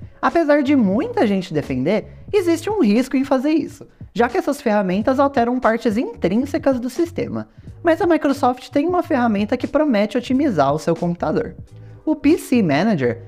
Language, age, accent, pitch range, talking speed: Portuguese, 20-39, Brazilian, 200-295 Hz, 160 wpm